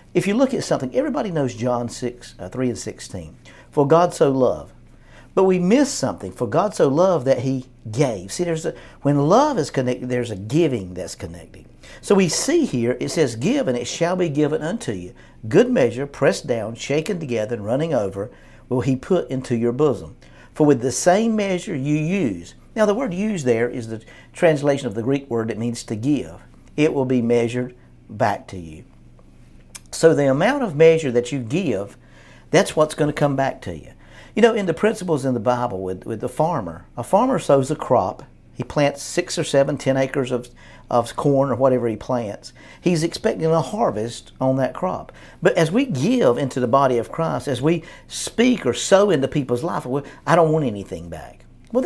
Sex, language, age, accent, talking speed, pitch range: male, English, 50-69, American, 205 wpm, 120-165 Hz